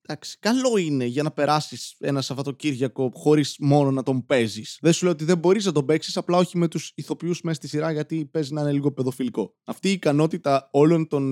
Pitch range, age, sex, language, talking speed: 140-195 Hz, 20-39, male, Greek, 215 wpm